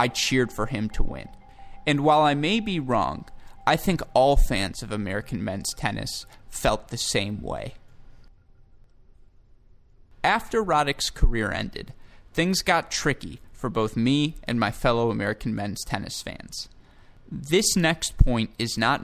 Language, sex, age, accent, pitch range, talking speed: English, male, 20-39, American, 110-140 Hz, 145 wpm